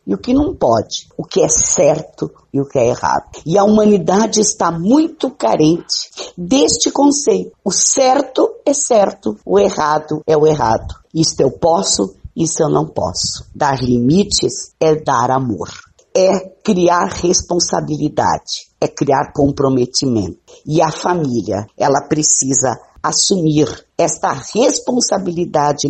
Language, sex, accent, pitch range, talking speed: Portuguese, female, Brazilian, 140-195 Hz, 130 wpm